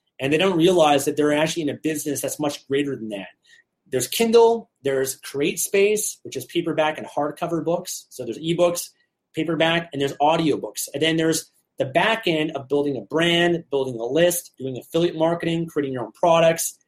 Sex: male